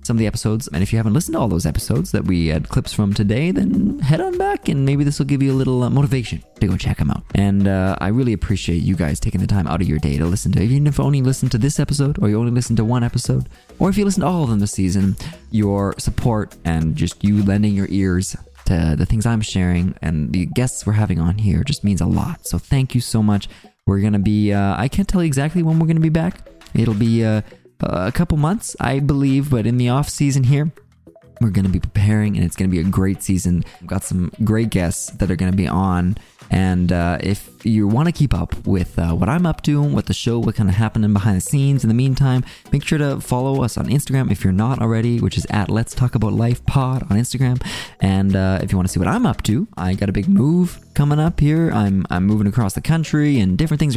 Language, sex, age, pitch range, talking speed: English, male, 20-39, 95-135 Hz, 265 wpm